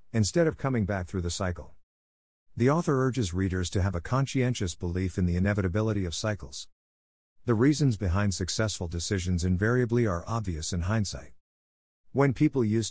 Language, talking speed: English, 160 wpm